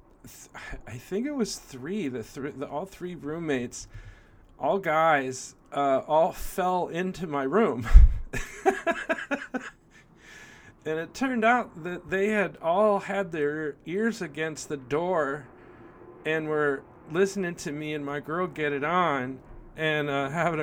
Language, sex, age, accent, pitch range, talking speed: English, male, 40-59, American, 120-160 Hz, 135 wpm